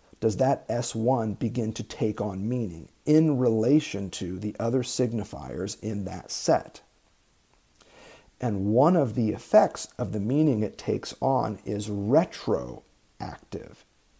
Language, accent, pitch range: English, American, 105-130 Hz